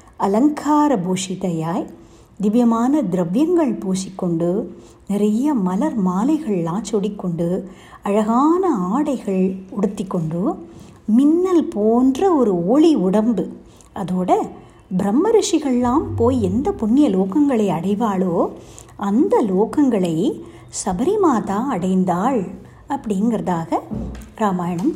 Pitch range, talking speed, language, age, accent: 190-295 Hz, 75 wpm, Tamil, 60-79, native